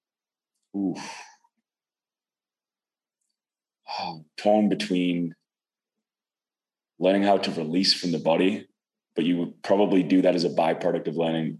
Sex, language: male, English